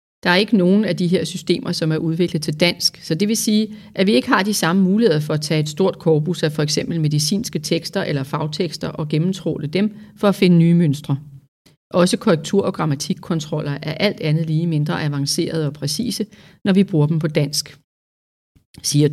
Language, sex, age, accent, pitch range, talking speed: Danish, female, 40-59, native, 150-190 Hz, 200 wpm